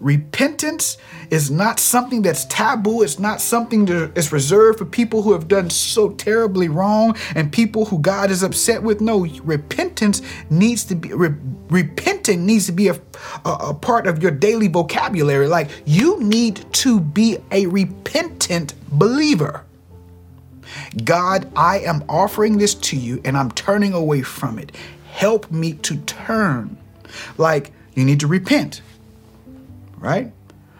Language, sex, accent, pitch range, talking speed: English, male, American, 120-195 Hz, 145 wpm